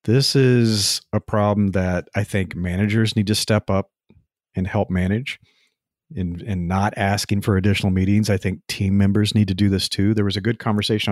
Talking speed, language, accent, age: 200 wpm, English, American, 40-59